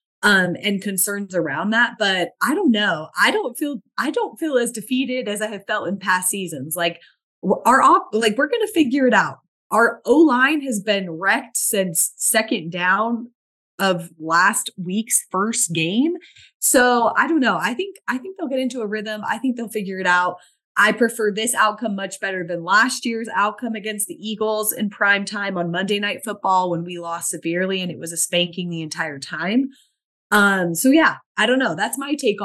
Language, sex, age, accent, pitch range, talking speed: English, female, 30-49, American, 180-230 Hz, 195 wpm